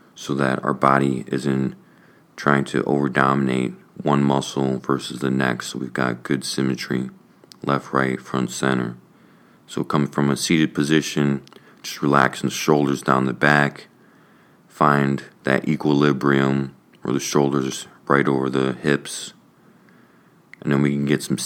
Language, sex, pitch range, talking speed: English, male, 65-70 Hz, 150 wpm